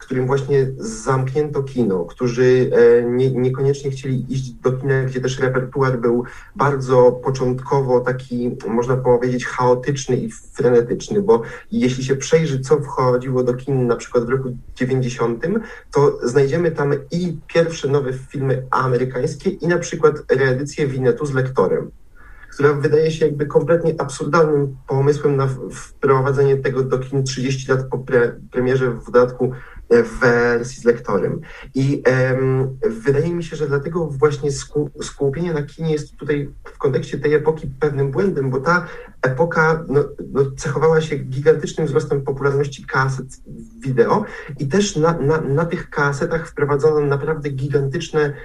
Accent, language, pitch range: native, Polish, 130-150 Hz